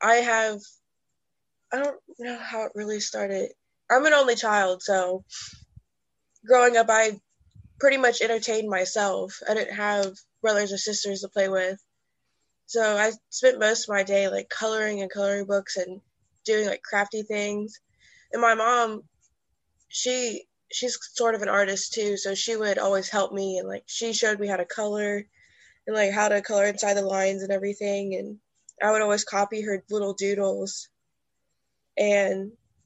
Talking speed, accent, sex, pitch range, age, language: 165 wpm, American, female, 195-220 Hz, 20-39, English